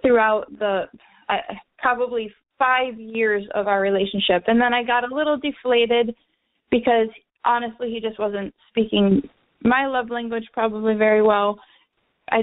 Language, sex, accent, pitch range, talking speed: English, female, American, 210-255 Hz, 140 wpm